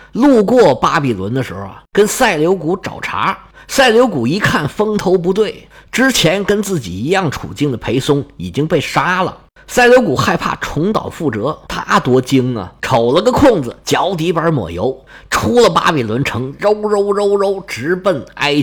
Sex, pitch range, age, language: male, 120-200 Hz, 50-69, Chinese